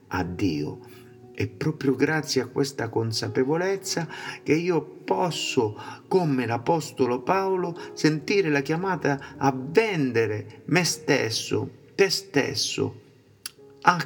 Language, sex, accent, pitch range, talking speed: Italian, male, native, 125-190 Hz, 100 wpm